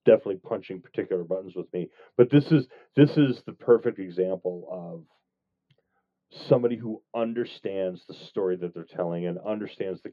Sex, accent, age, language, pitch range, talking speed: male, American, 40-59, English, 90-105 Hz, 155 wpm